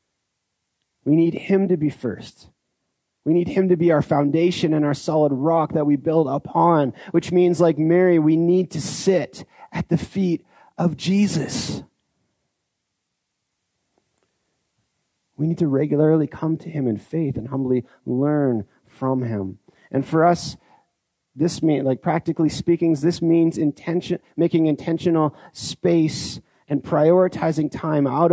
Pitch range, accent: 145-175 Hz, American